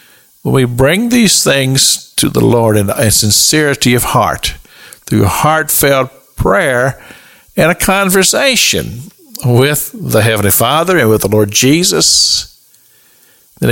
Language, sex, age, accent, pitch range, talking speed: English, male, 50-69, American, 120-170 Hz, 125 wpm